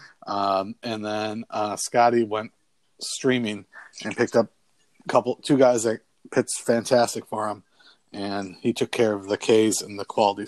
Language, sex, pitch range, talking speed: English, male, 105-120 Hz, 165 wpm